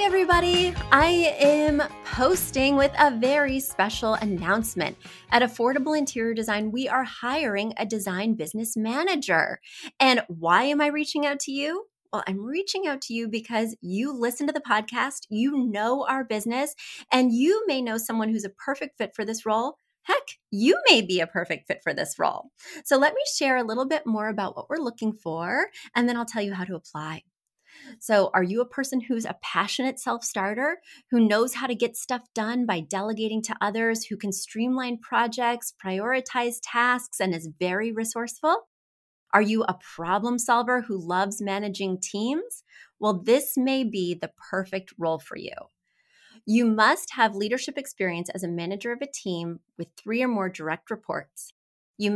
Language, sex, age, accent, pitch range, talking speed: English, female, 30-49, American, 200-265 Hz, 175 wpm